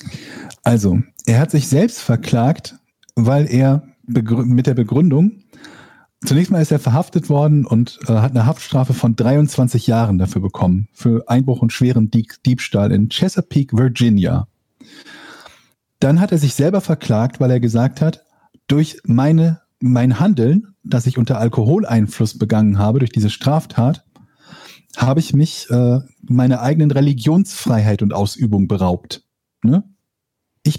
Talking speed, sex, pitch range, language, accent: 140 wpm, male, 115-145 Hz, German, German